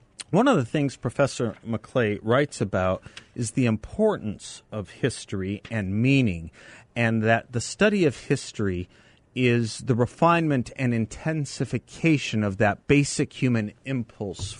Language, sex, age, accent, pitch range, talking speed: English, male, 40-59, American, 100-130 Hz, 125 wpm